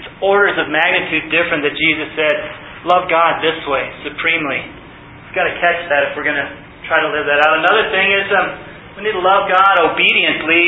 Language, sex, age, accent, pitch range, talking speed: English, male, 30-49, American, 155-190 Hz, 200 wpm